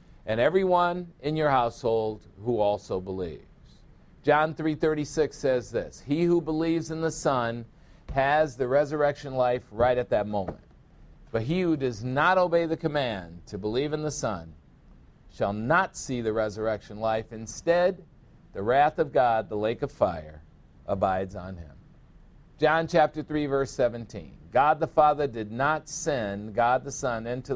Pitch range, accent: 110-150 Hz, American